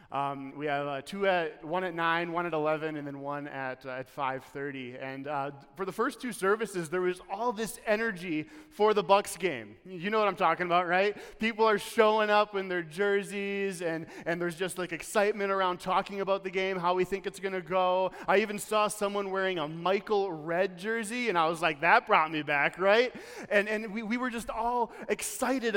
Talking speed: 215 wpm